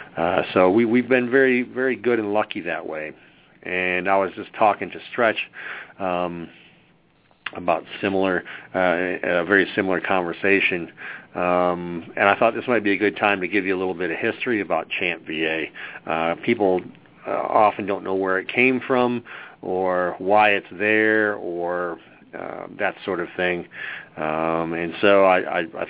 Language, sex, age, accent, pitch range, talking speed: English, male, 40-59, American, 85-105 Hz, 170 wpm